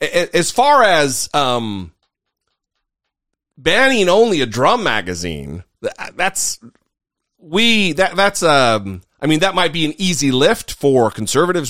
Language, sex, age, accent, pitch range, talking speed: English, male, 40-59, American, 110-155 Hz, 125 wpm